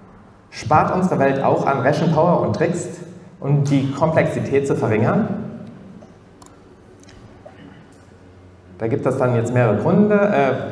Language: German